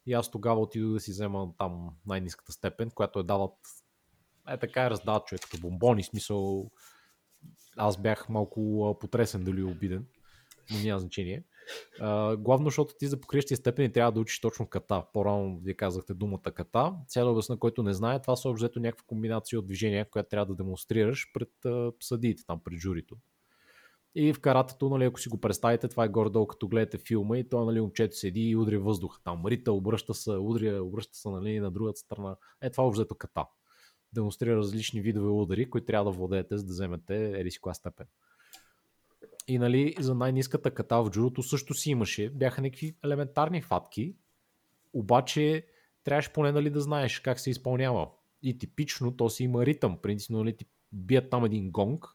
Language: Bulgarian